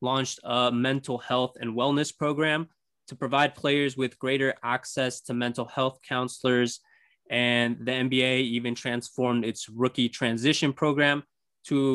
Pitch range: 120-145 Hz